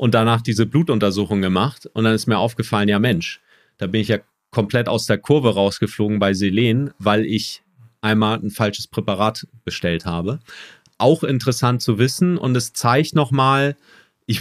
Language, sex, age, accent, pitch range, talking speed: German, male, 40-59, German, 105-125 Hz, 165 wpm